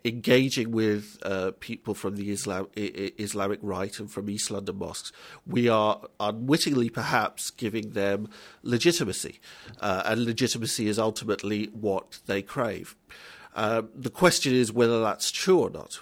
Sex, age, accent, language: male, 40-59, British, English